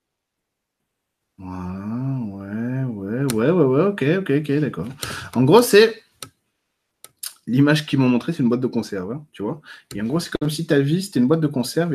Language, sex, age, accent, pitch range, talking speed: French, male, 20-39, French, 105-140 Hz, 190 wpm